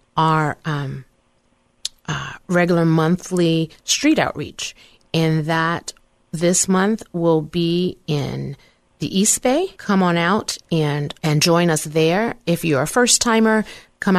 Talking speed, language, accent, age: 130 wpm, English, American, 30-49